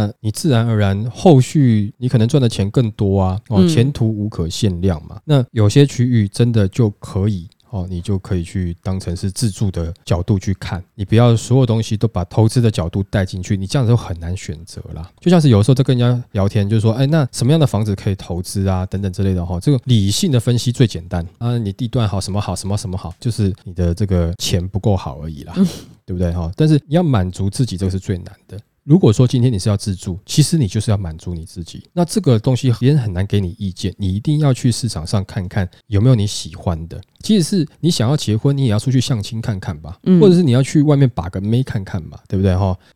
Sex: male